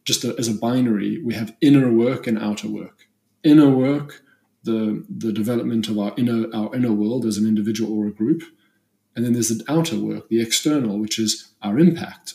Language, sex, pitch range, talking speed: English, male, 105-125 Hz, 205 wpm